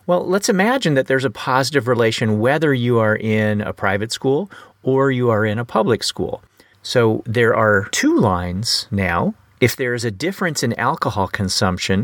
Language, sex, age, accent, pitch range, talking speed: English, male, 40-59, American, 100-135 Hz, 180 wpm